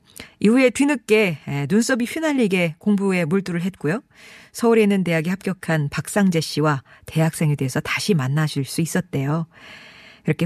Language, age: Korean, 40-59